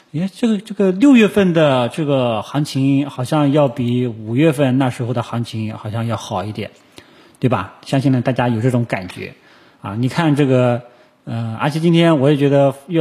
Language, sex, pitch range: Chinese, male, 125-170 Hz